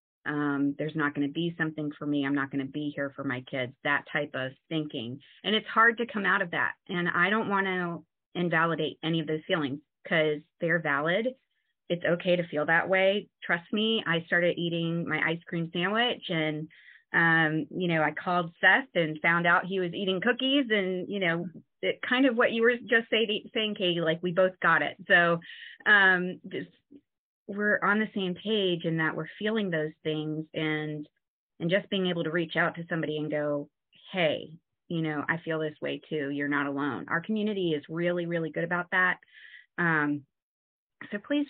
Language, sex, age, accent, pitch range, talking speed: English, female, 30-49, American, 150-185 Hz, 200 wpm